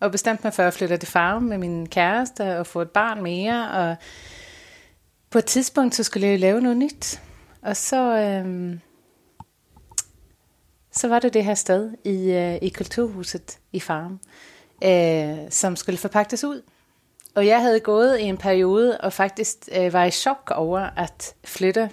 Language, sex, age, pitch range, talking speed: Danish, female, 30-49, 180-225 Hz, 170 wpm